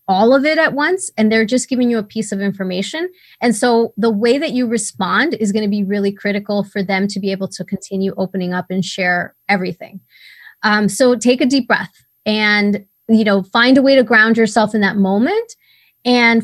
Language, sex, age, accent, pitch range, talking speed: English, female, 20-39, American, 200-245 Hz, 210 wpm